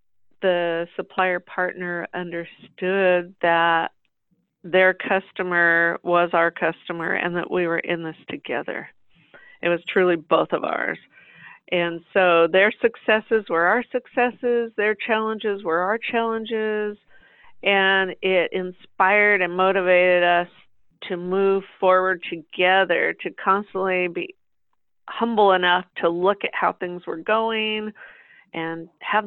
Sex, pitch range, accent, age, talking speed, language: female, 175-205 Hz, American, 50-69, 120 wpm, English